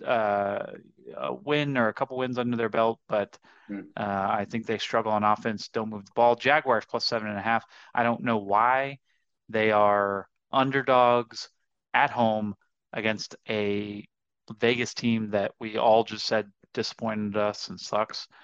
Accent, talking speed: American, 165 wpm